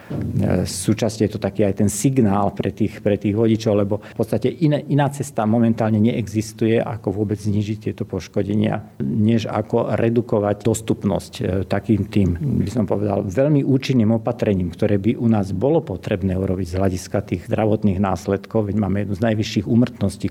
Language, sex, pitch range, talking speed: Slovak, male, 100-115 Hz, 165 wpm